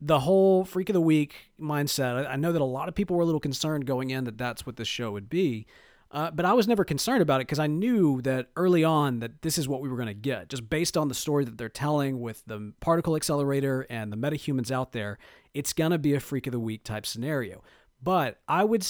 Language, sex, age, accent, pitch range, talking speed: English, male, 40-59, American, 120-160 Hz, 255 wpm